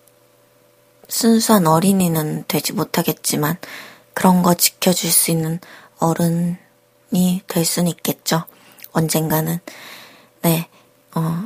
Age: 20-39